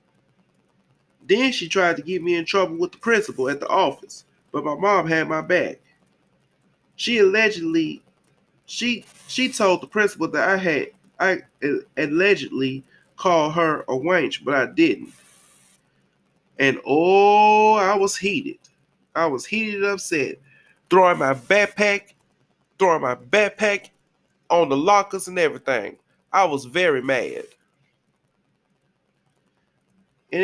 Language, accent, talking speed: English, American, 130 wpm